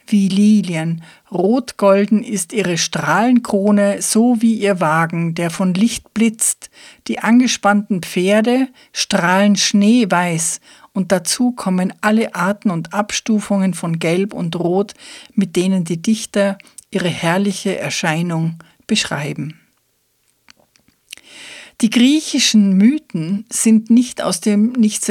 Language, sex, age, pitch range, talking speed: German, female, 50-69, 185-225 Hz, 110 wpm